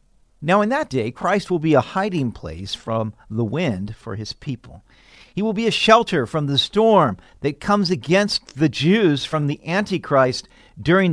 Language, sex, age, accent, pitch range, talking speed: English, male, 50-69, American, 130-185 Hz, 180 wpm